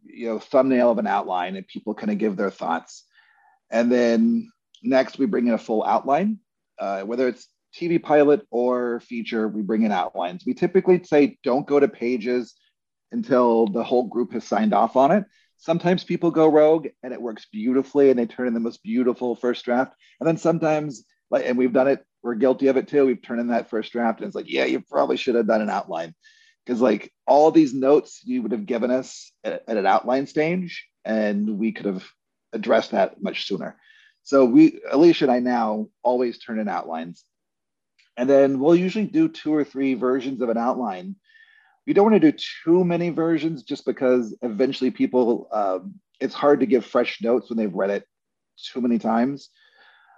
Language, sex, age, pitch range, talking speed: English, male, 40-59, 120-180 Hz, 200 wpm